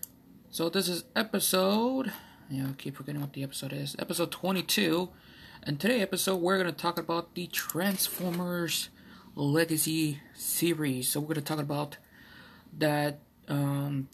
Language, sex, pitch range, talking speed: English, male, 145-185 Hz, 150 wpm